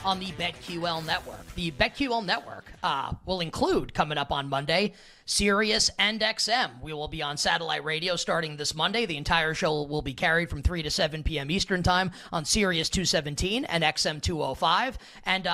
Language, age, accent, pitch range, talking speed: English, 30-49, American, 155-195 Hz, 175 wpm